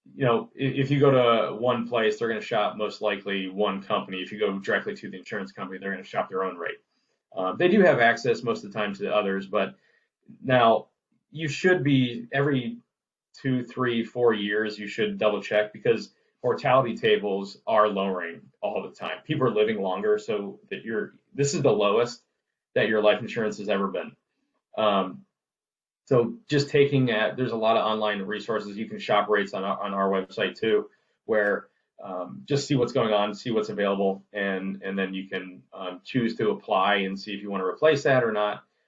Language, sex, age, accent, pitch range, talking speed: English, male, 20-39, American, 100-140 Hz, 205 wpm